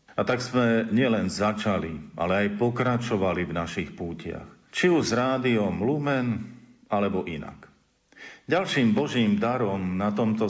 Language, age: Slovak, 50-69